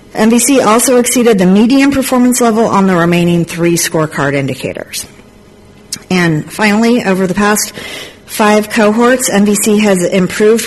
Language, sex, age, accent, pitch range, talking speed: English, female, 50-69, American, 160-215 Hz, 130 wpm